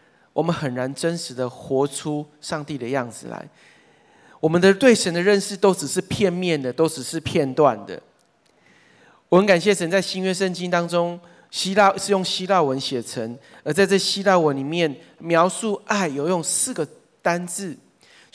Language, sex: Chinese, male